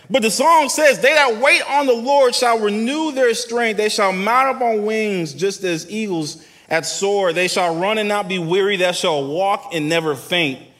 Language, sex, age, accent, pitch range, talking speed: English, male, 30-49, American, 135-220 Hz, 210 wpm